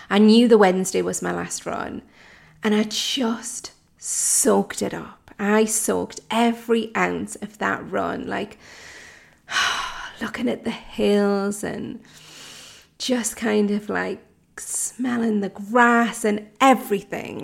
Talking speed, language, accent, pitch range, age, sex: 125 wpm, English, British, 195-235 Hz, 30-49, female